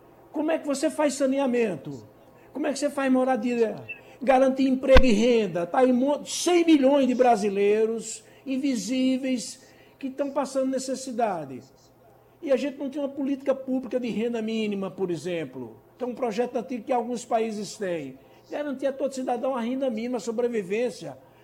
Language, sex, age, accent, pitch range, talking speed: Portuguese, male, 60-79, Brazilian, 185-255 Hz, 160 wpm